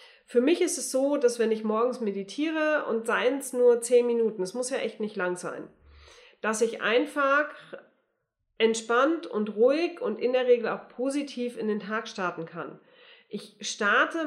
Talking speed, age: 175 wpm, 30-49